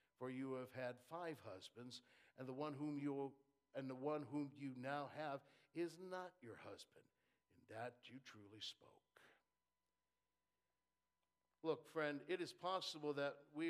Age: 60-79